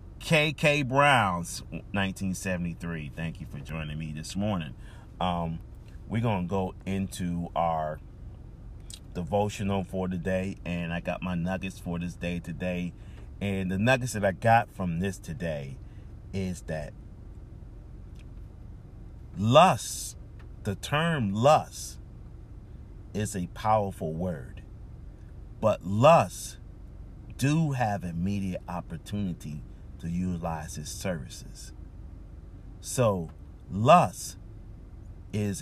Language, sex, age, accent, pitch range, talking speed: English, male, 40-59, American, 90-110 Hz, 105 wpm